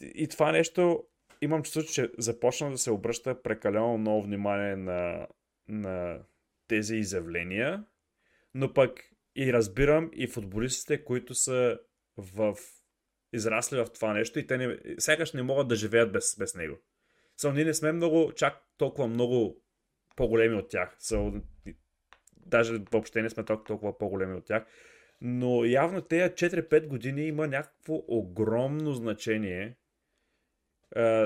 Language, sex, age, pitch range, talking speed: Bulgarian, male, 30-49, 105-135 Hz, 135 wpm